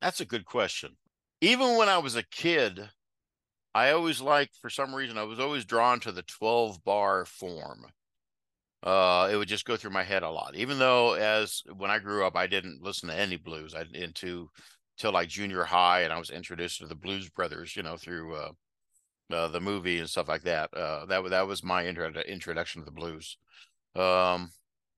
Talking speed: 200 wpm